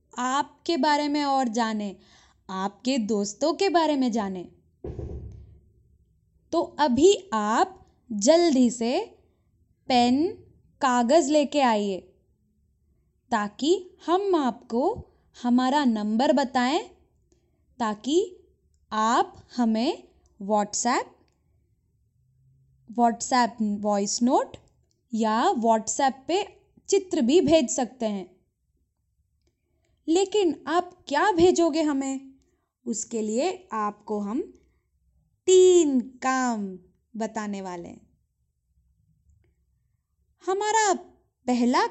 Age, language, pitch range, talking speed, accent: 20-39, Hindi, 210-330 Hz, 80 wpm, native